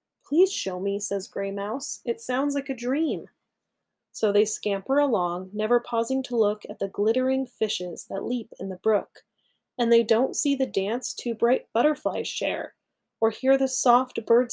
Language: English